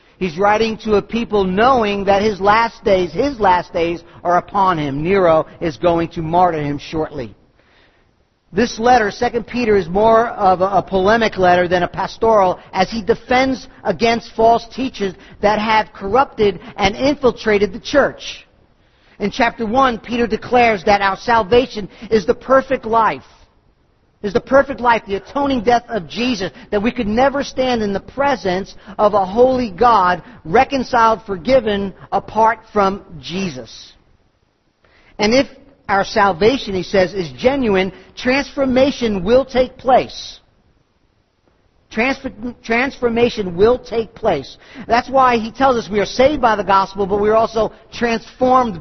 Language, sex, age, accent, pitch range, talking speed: English, male, 50-69, American, 190-240 Hz, 150 wpm